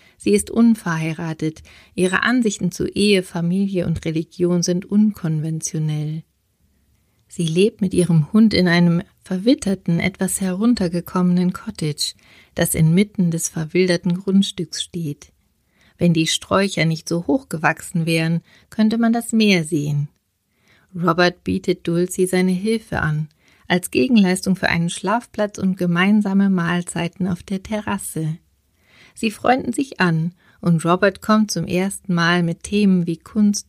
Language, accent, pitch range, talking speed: German, German, 165-200 Hz, 130 wpm